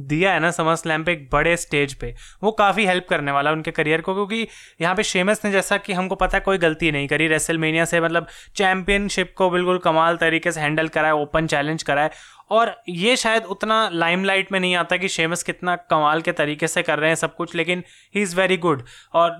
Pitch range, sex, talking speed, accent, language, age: 160-190 Hz, male, 230 wpm, native, Hindi, 20-39